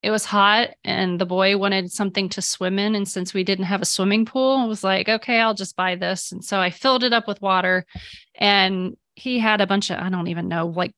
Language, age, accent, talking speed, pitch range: English, 30-49, American, 250 wpm, 190-230 Hz